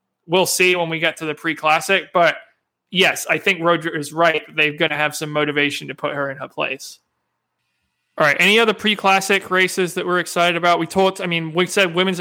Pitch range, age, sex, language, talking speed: 150-180 Hz, 20-39, male, English, 215 wpm